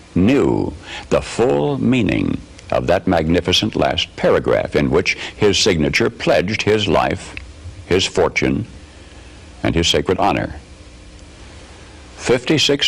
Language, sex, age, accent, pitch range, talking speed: English, male, 60-79, American, 85-105 Hz, 105 wpm